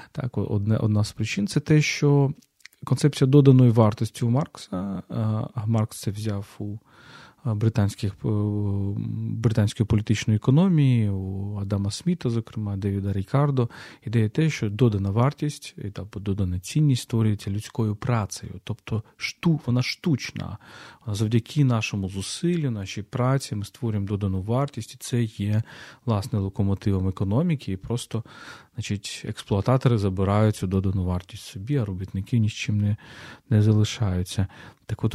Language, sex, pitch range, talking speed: Ukrainian, male, 105-130 Hz, 125 wpm